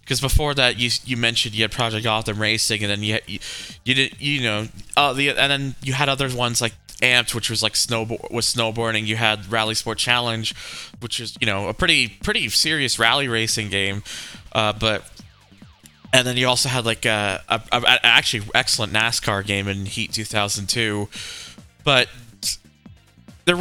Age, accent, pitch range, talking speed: 20-39, American, 105-125 Hz, 190 wpm